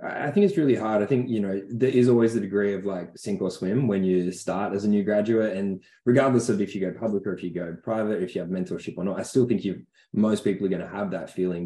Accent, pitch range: Australian, 90-110 Hz